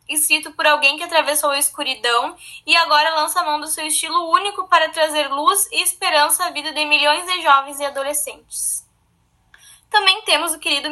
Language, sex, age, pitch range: Portuguese, female, 10-29, 295-365 Hz